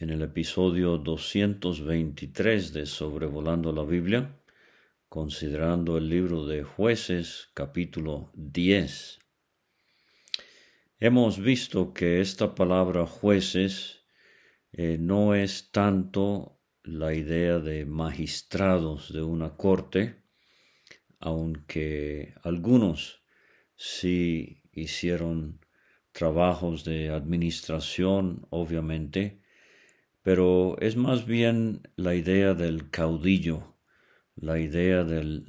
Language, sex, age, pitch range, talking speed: Spanish, male, 50-69, 80-95 Hz, 85 wpm